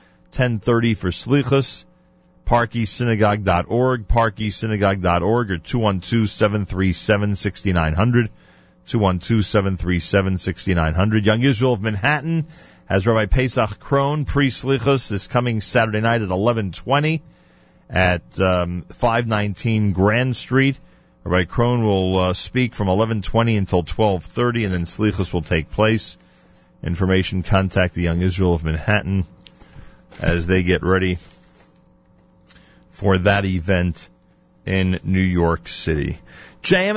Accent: American